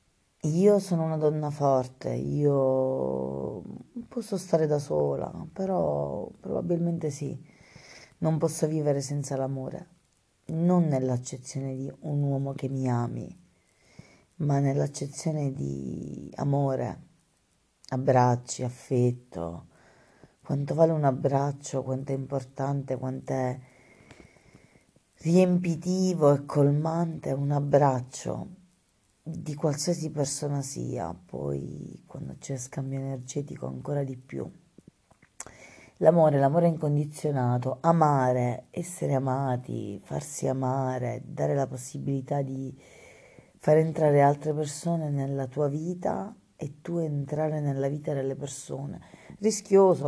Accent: native